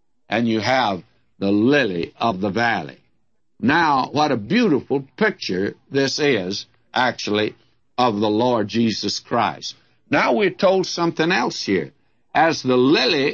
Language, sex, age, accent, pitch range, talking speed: English, male, 60-79, American, 115-155 Hz, 135 wpm